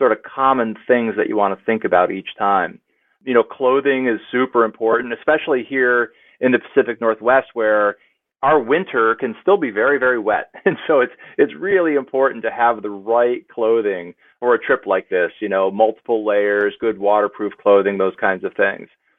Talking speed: 190 wpm